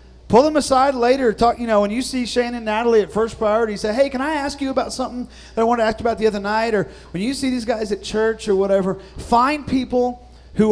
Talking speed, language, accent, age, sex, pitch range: 265 wpm, English, American, 40-59, male, 150-210 Hz